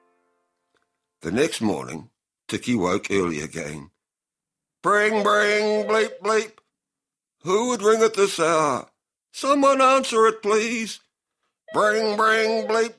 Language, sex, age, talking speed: English, male, 60-79, 110 wpm